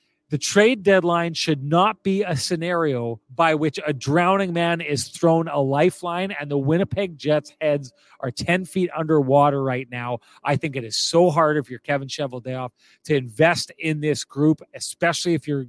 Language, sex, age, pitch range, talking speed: English, male, 40-59, 145-175 Hz, 175 wpm